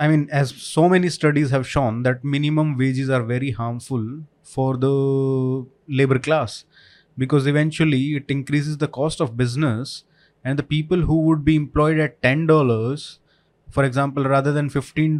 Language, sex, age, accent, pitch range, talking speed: Hindi, male, 20-39, native, 130-155 Hz, 160 wpm